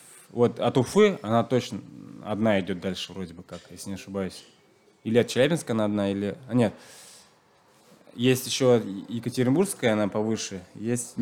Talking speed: 145 wpm